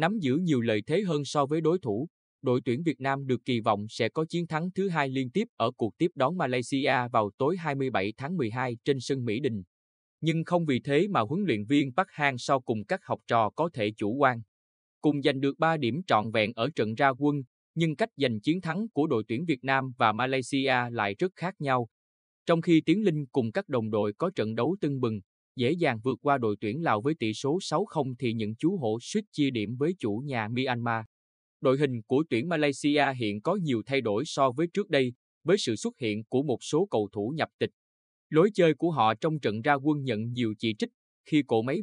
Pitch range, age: 110-155 Hz, 20-39